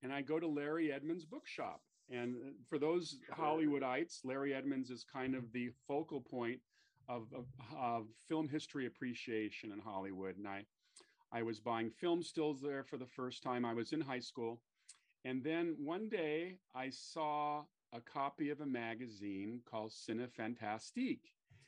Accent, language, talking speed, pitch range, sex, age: American, English, 160 wpm, 115-145 Hz, male, 40-59